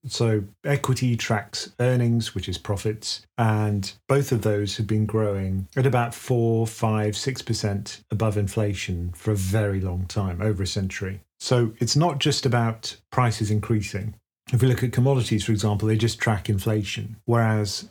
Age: 40-59